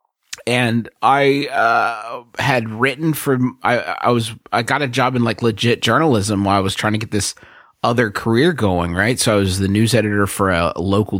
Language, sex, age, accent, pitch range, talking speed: English, male, 30-49, American, 90-110 Hz, 200 wpm